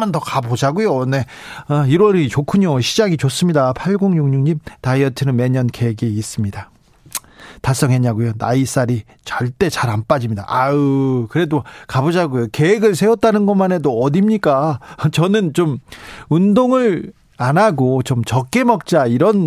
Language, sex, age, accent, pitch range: Korean, male, 40-59, native, 130-185 Hz